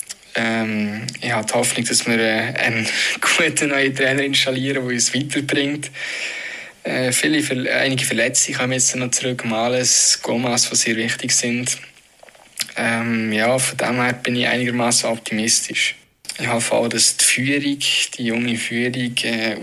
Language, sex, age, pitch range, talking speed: German, male, 20-39, 120-135 Hz, 150 wpm